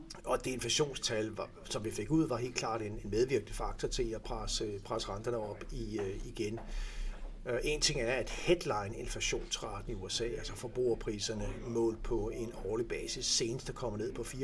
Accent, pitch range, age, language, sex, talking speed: native, 110-130 Hz, 60-79, Danish, male, 160 wpm